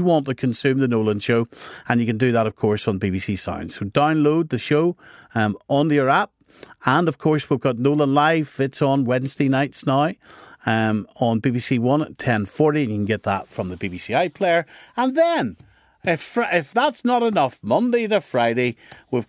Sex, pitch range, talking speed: male, 110-150 Hz, 195 wpm